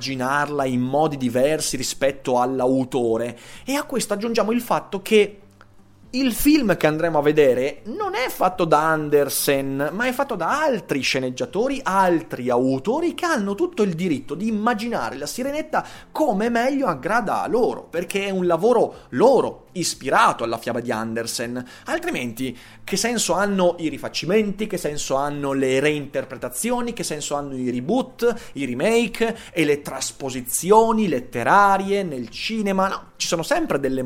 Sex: male